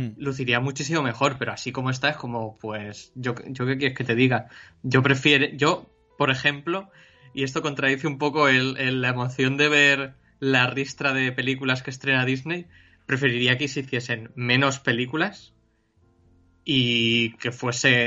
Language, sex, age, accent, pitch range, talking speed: Spanish, male, 20-39, Spanish, 120-140 Hz, 165 wpm